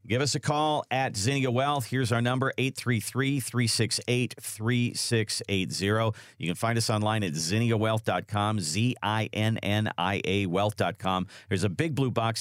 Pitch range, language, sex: 105-135 Hz, English, male